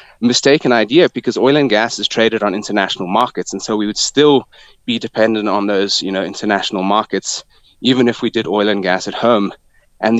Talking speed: 200 wpm